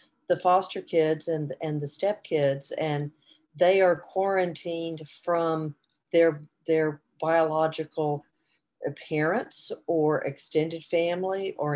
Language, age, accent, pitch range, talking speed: English, 50-69, American, 150-180 Hz, 100 wpm